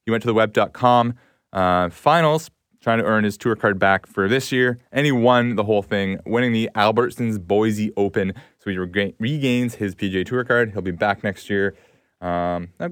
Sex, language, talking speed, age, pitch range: male, English, 195 wpm, 20-39, 95-125 Hz